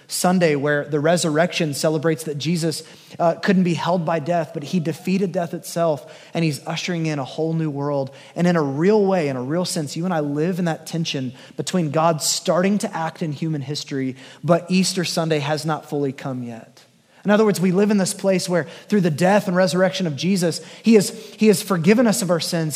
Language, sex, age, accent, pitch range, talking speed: English, male, 20-39, American, 160-200 Hz, 215 wpm